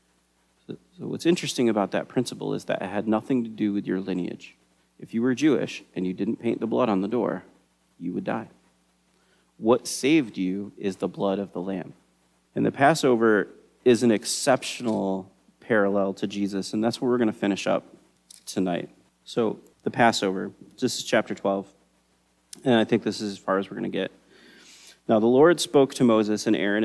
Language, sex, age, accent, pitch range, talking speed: English, male, 30-49, American, 95-115 Hz, 190 wpm